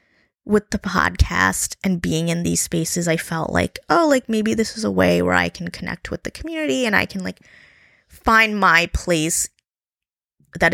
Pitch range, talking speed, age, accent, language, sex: 170-220 Hz, 185 wpm, 20-39, American, English, female